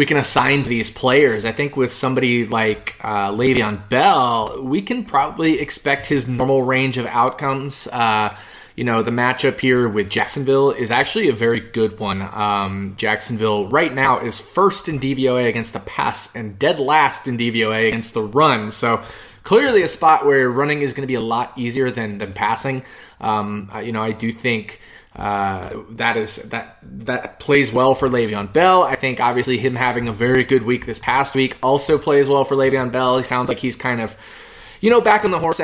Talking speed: 200 wpm